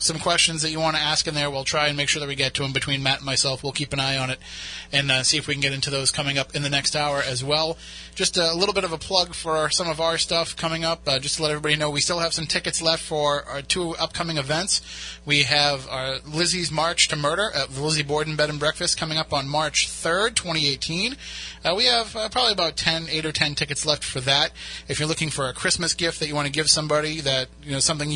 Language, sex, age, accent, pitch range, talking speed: English, male, 30-49, American, 140-160 Hz, 270 wpm